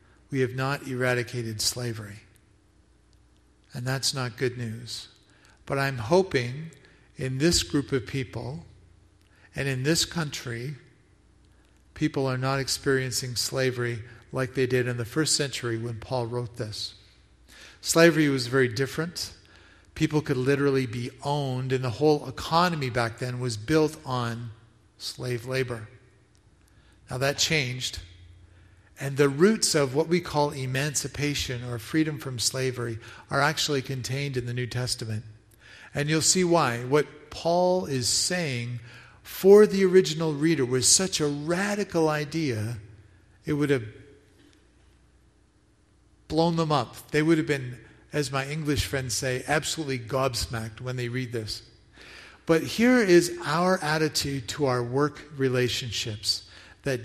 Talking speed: 135 wpm